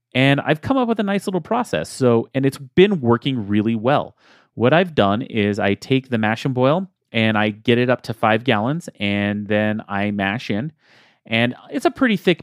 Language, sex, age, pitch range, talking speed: English, male, 30-49, 110-140 Hz, 210 wpm